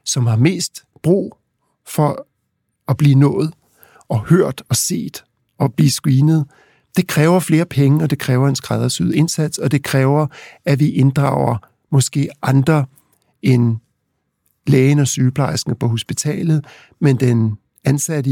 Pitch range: 130-155 Hz